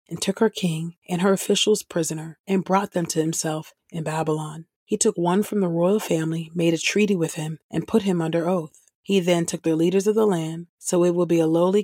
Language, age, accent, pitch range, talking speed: English, 30-49, American, 165-185 Hz, 235 wpm